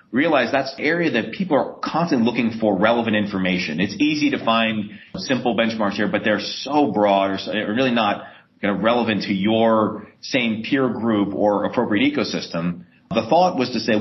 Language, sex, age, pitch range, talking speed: English, male, 40-59, 105-130 Hz, 165 wpm